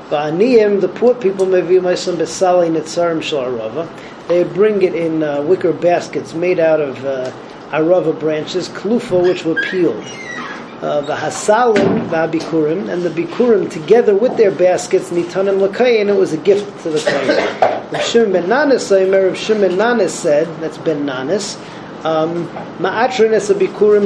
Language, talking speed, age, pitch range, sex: English, 130 wpm, 40-59, 165-205 Hz, male